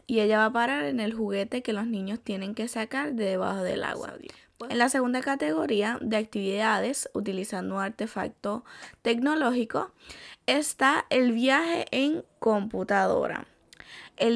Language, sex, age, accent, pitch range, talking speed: Spanish, female, 10-29, American, 220-270 Hz, 140 wpm